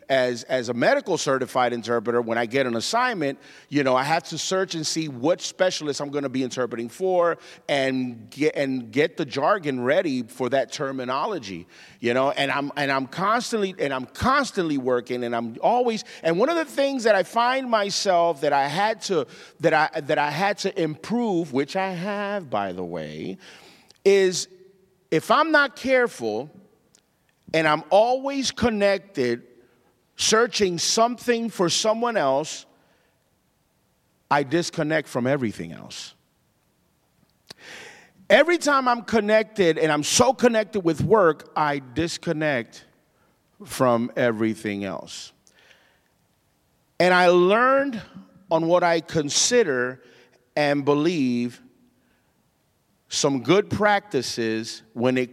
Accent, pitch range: American, 125-195 Hz